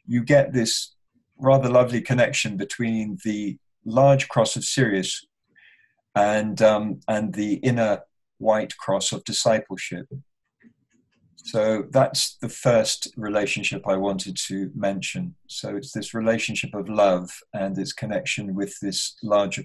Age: 50-69